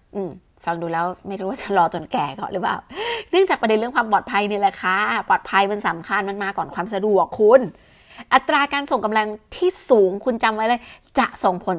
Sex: female